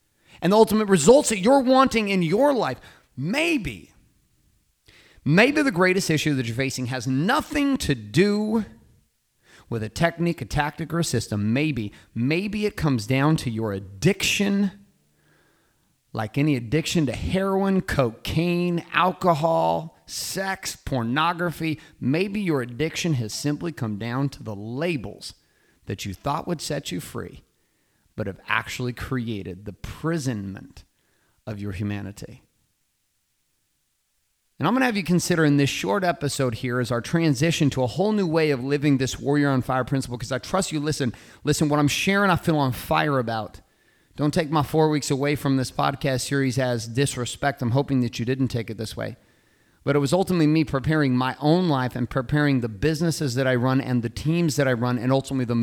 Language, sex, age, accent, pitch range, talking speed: English, male, 30-49, American, 120-165 Hz, 175 wpm